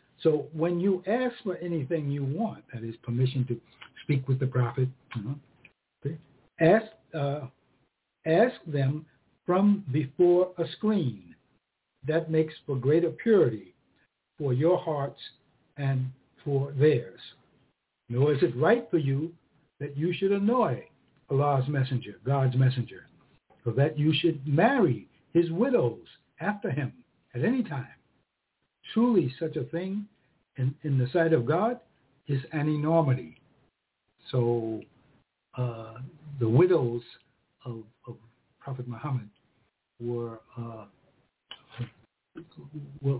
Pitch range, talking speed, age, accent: 130-165 Hz, 115 wpm, 60-79, American